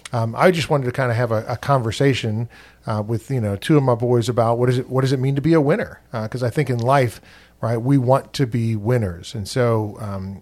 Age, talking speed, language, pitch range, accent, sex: 40-59, 255 wpm, English, 115-140 Hz, American, male